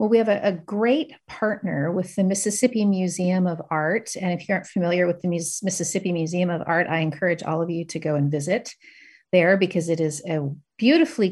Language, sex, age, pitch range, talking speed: English, female, 40-59, 170-210 Hz, 205 wpm